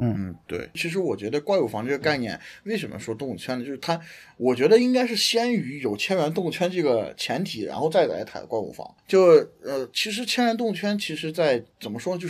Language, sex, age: Chinese, male, 30-49